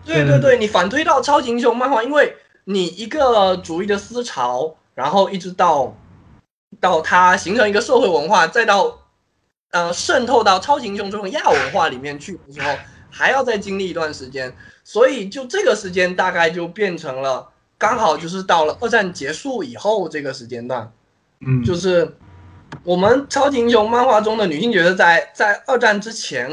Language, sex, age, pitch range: Chinese, male, 20-39, 170-255 Hz